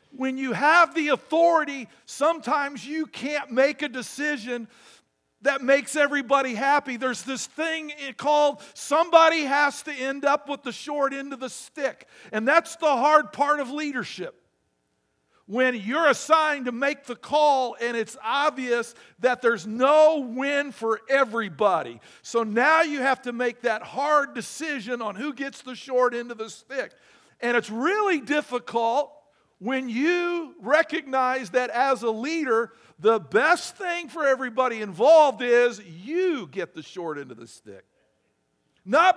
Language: English